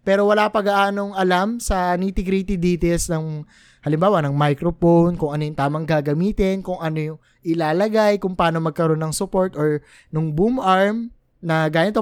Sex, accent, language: male, native, Filipino